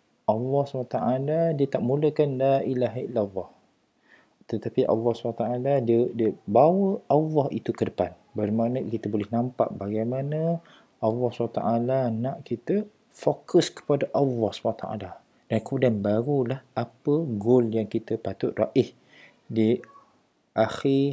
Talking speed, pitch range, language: 120 wpm, 115-155 Hz, Malay